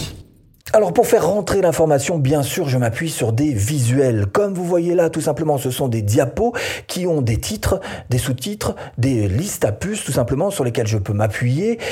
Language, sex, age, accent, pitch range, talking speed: French, male, 40-59, French, 115-160 Hz, 195 wpm